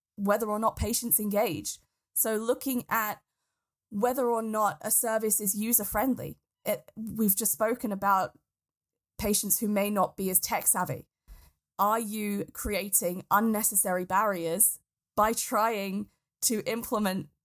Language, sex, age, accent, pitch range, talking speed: English, female, 20-39, British, 195-230 Hz, 125 wpm